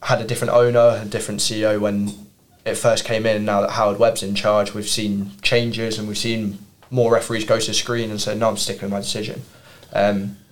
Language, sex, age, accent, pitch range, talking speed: English, male, 10-29, British, 105-115 Hz, 220 wpm